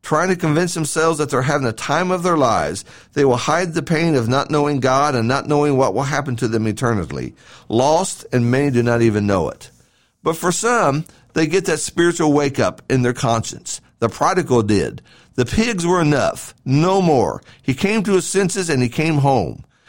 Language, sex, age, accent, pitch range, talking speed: English, male, 50-69, American, 130-175 Hz, 205 wpm